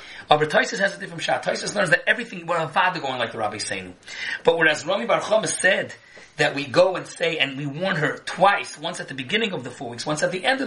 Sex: male